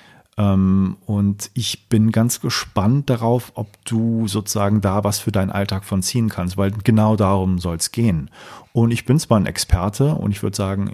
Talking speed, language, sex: 180 wpm, German, male